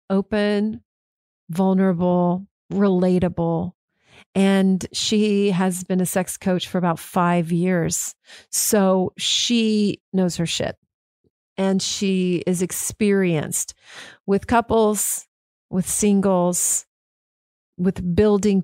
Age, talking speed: 40-59, 95 wpm